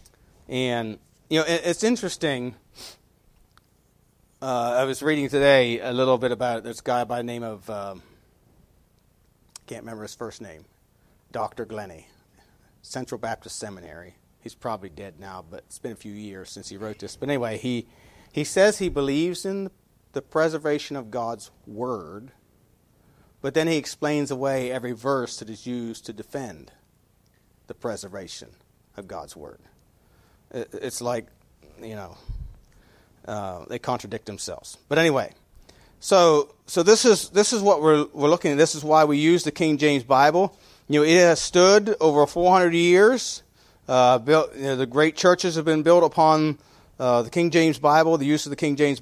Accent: American